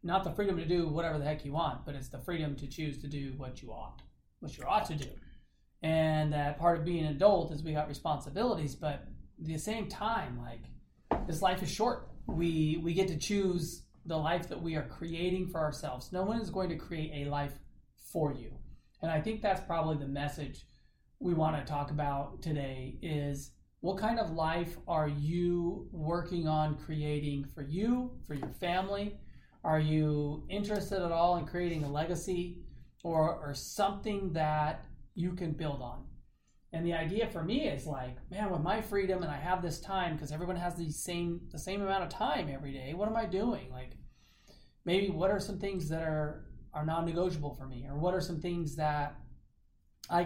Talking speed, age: 200 wpm, 40-59